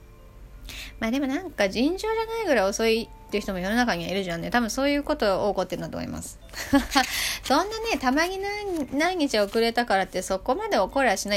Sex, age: female, 20-39